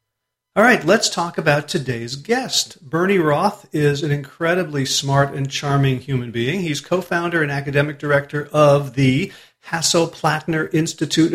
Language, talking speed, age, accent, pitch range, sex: English, 150 wpm, 40-59, American, 130-160 Hz, male